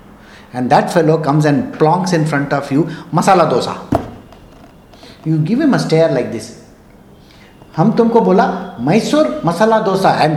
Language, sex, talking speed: English, male, 145 wpm